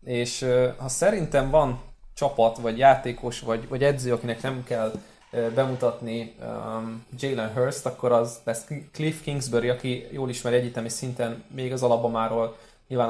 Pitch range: 115-140 Hz